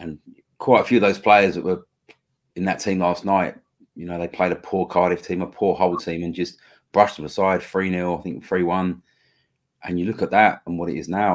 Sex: male